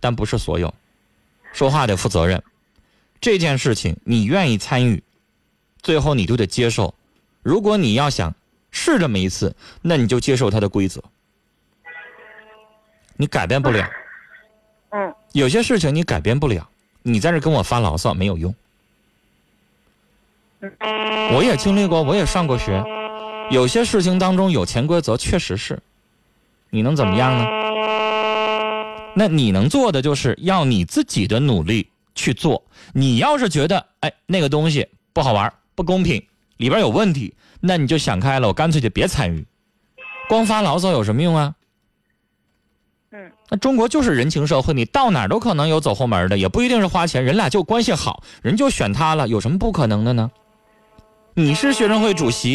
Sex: male